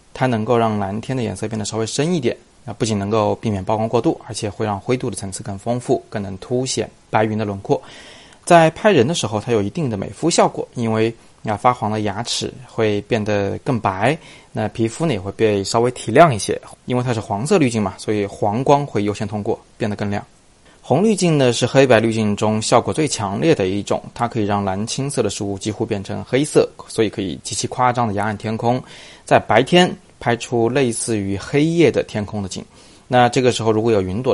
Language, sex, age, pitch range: Chinese, male, 20-39, 105-125 Hz